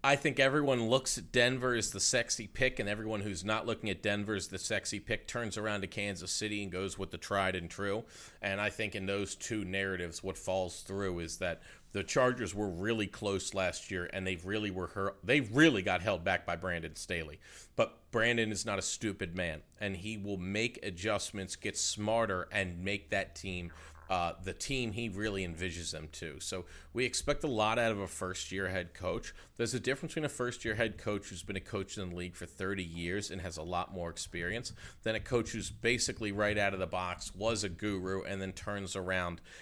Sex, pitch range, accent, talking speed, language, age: male, 90-105 Hz, American, 215 wpm, English, 40-59